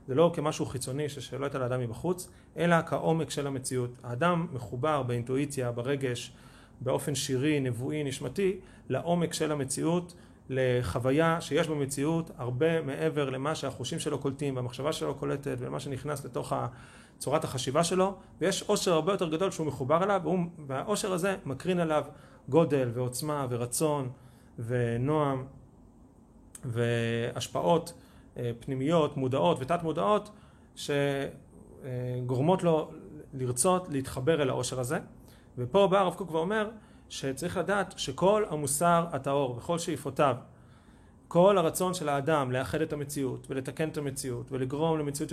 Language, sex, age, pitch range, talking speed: Hebrew, male, 30-49, 130-170 Hz, 125 wpm